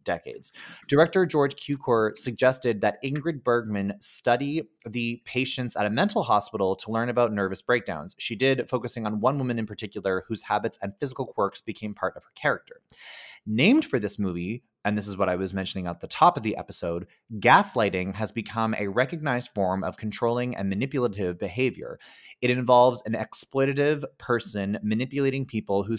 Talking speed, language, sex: 170 wpm, English, male